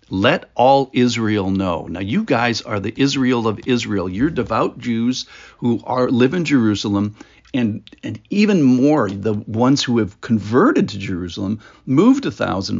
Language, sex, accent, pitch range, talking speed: English, male, American, 105-140 Hz, 160 wpm